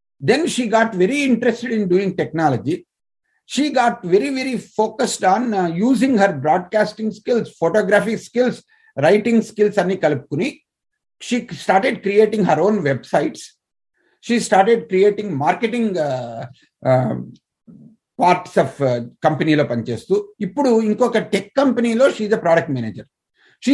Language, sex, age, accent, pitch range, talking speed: Telugu, male, 50-69, native, 155-225 Hz, 135 wpm